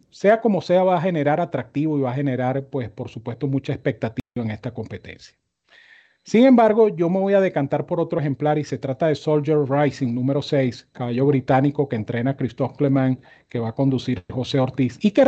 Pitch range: 130-165 Hz